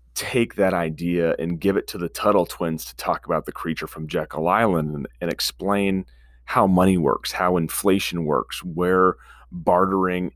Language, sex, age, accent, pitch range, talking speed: English, male, 30-49, American, 80-105 Hz, 170 wpm